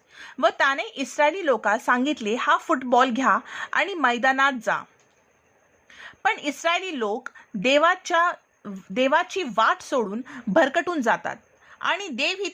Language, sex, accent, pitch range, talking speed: Marathi, female, native, 250-340 Hz, 110 wpm